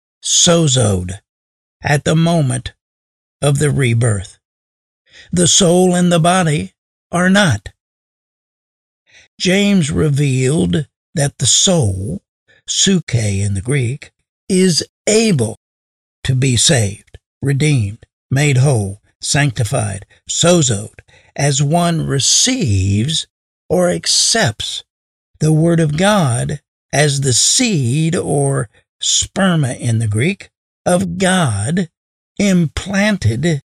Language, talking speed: English, 95 wpm